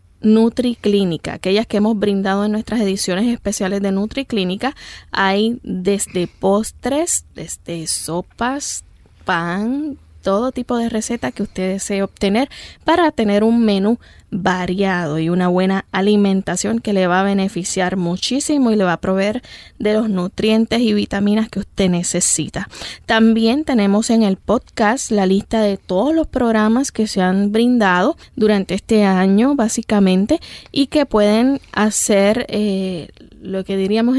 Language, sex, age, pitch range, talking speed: Spanish, female, 10-29, 195-230 Hz, 140 wpm